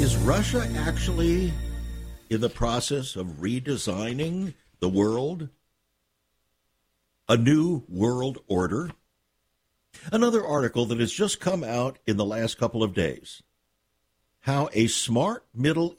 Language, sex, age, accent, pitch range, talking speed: English, male, 60-79, American, 100-145 Hz, 115 wpm